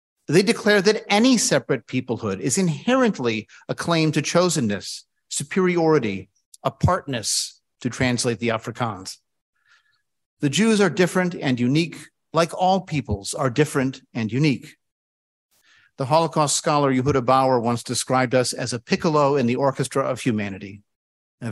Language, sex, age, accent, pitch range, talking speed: English, male, 50-69, American, 120-170 Hz, 135 wpm